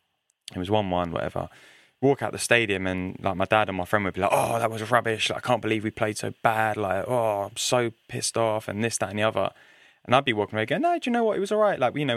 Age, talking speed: 20-39, 290 wpm